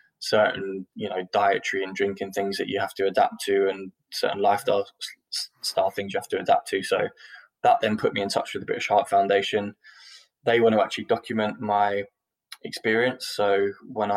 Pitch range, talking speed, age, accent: 95-105 Hz, 185 wpm, 10-29, British